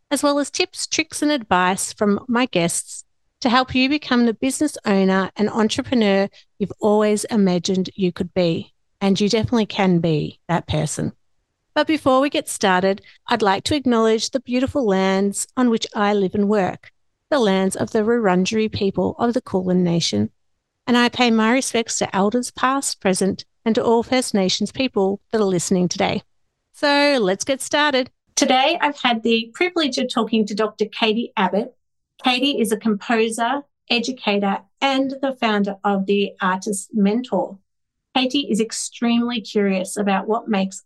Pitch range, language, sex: 195-250 Hz, English, female